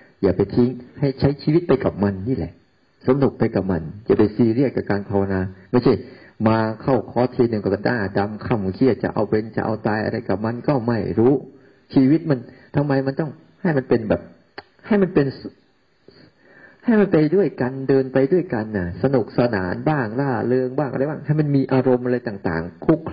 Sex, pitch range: male, 100-130 Hz